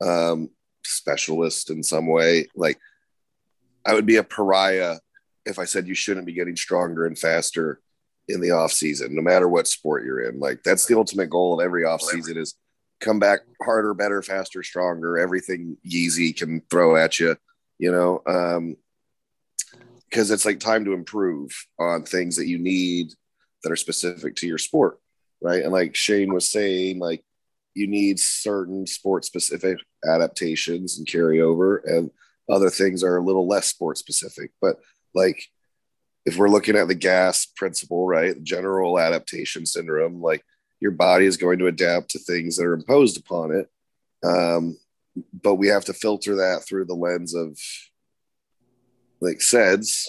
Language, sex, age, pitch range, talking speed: English, male, 30-49, 85-100 Hz, 165 wpm